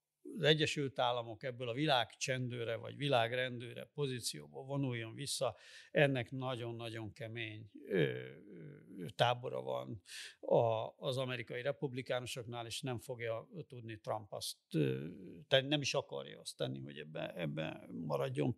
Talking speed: 115 wpm